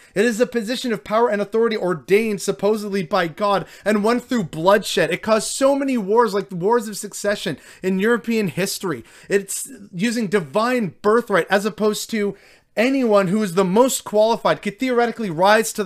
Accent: American